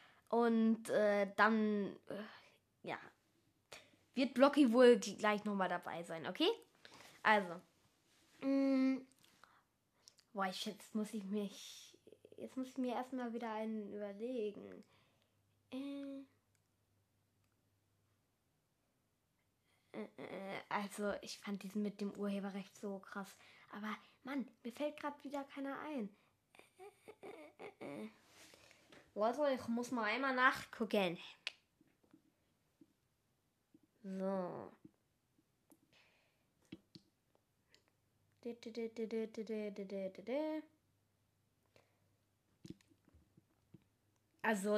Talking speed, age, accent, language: 80 wpm, 20-39, German, German